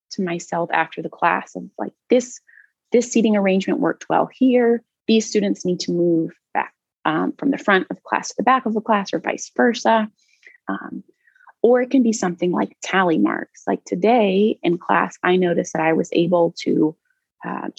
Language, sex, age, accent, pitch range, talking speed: English, female, 20-39, American, 175-230 Hz, 190 wpm